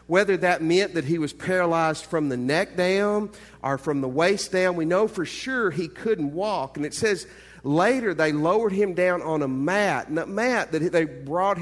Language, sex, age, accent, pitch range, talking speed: English, male, 50-69, American, 140-190 Hz, 205 wpm